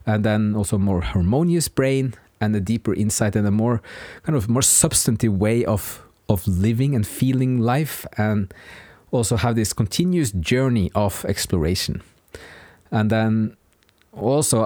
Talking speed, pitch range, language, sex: 145 wpm, 100-130 Hz, English, male